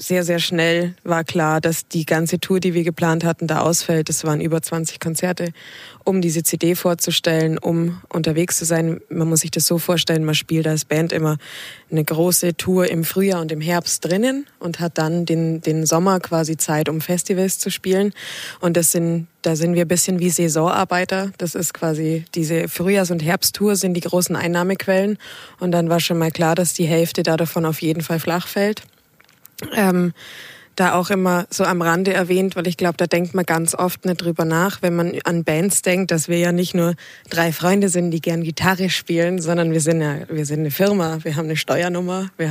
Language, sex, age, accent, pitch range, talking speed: German, female, 20-39, German, 165-180 Hz, 205 wpm